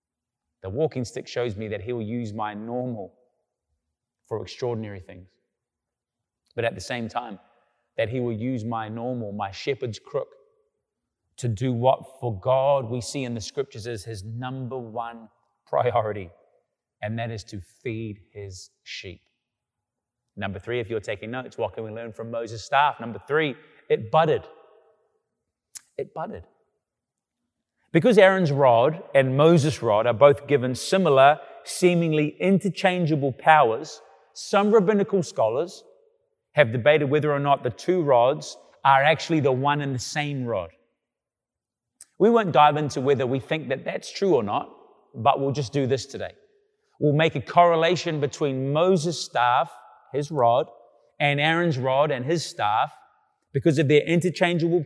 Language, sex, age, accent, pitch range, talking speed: English, male, 30-49, British, 120-160 Hz, 150 wpm